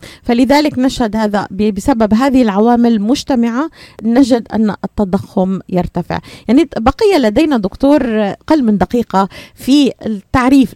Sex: female